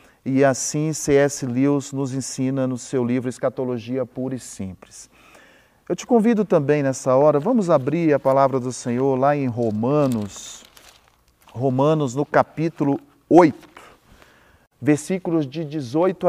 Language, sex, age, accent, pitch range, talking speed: Portuguese, male, 40-59, Brazilian, 125-175 Hz, 130 wpm